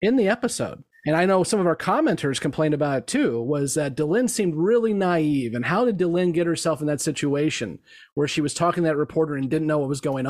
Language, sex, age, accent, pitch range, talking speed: English, male, 30-49, American, 145-180 Hz, 245 wpm